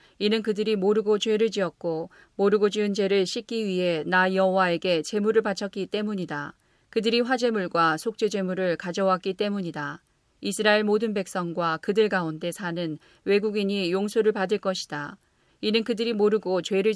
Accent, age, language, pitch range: native, 40-59, Korean, 185-215 Hz